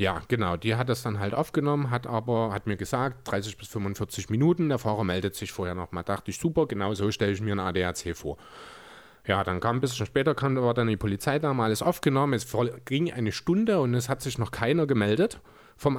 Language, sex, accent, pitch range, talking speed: German, male, German, 105-140 Hz, 225 wpm